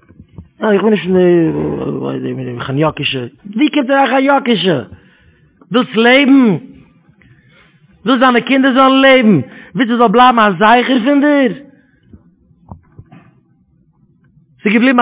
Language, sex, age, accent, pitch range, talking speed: English, male, 40-59, Dutch, 215-280 Hz, 95 wpm